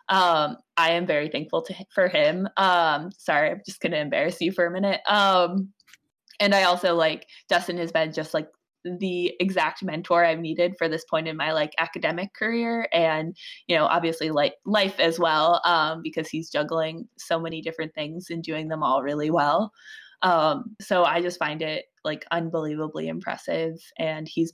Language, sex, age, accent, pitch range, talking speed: English, female, 20-39, American, 160-190 Hz, 180 wpm